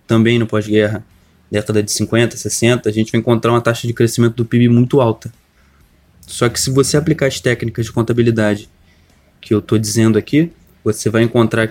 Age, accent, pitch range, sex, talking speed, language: 20-39, Brazilian, 110-125 Hz, male, 185 wpm, Portuguese